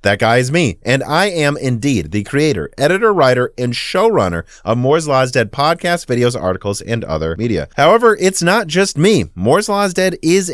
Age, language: 30-49, English